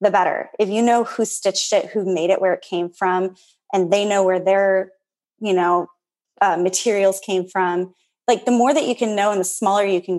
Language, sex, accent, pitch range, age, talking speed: English, female, American, 180-220 Hz, 20-39, 225 wpm